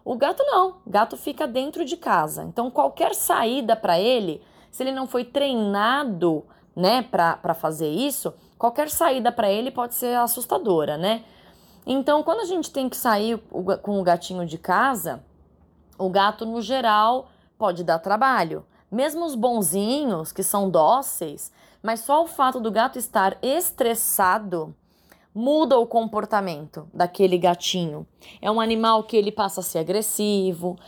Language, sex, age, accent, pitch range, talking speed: Portuguese, female, 20-39, Brazilian, 180-250 Hz, 150 wpm